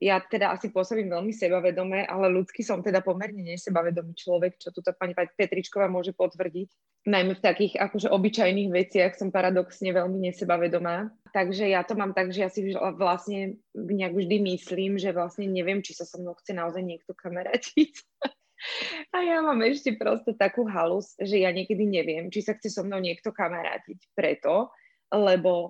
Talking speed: 170 wpm